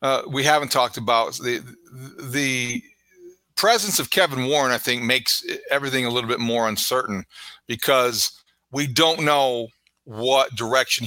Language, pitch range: English, 125-150 Hz